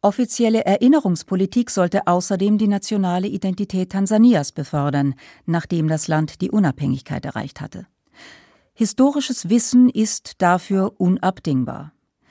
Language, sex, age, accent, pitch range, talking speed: German, female, 40-59, German, 170-210 Hz, 100 wpm